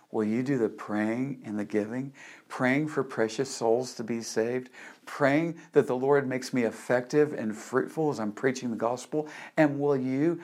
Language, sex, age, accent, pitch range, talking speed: English, male, 50-69, American, 115-140 Hz, 185 wpm